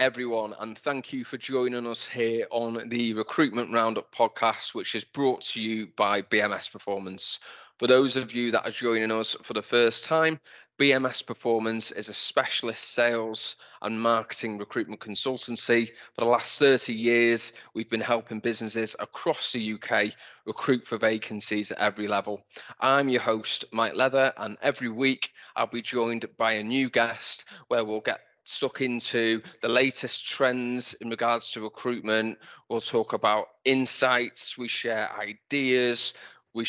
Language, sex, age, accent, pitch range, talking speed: English, male, 20-39, British, 110-130 Hz, 155 wpm